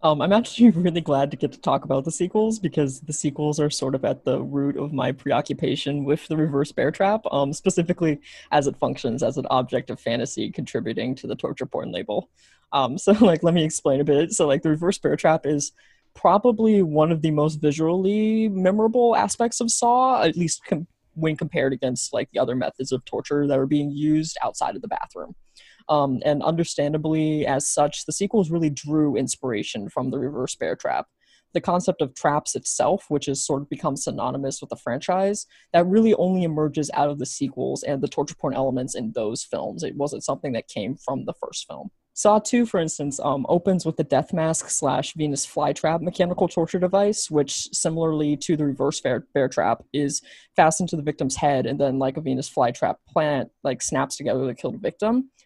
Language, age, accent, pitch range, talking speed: English, 20-39, American, 145-180 Hz, 200 wpm